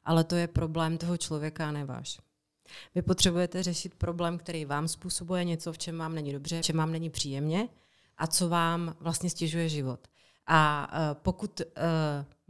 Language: Czech